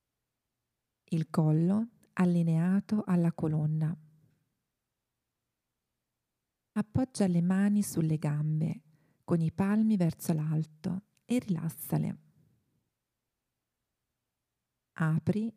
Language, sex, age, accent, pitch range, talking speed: Italian, female, 40-59, native, 155-185 Hz, 70 wpm